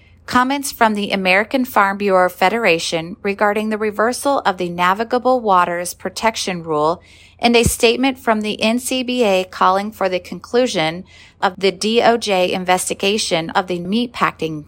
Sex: female